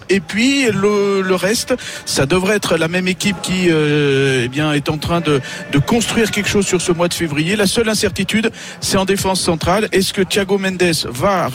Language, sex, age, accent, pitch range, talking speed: French, male, 50-69, French, 155-190 Hz, 210 wpm